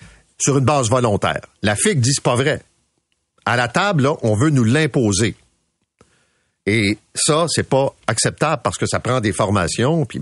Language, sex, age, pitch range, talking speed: French, male, 50-69, 95-130 Hz, 175 wpm